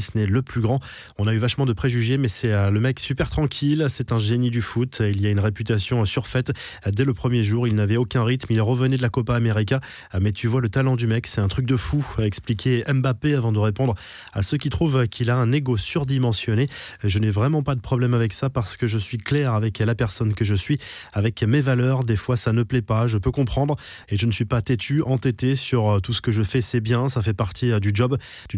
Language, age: French, 20-39